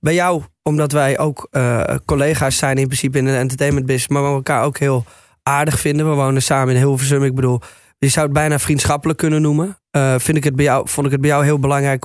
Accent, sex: Dutch, male